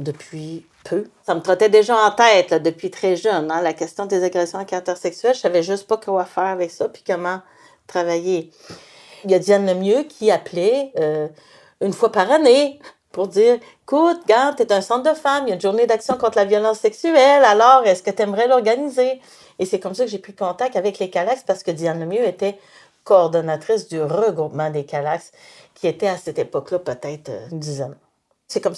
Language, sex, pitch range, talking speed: French, female, 170-230 Hz, 215 wpm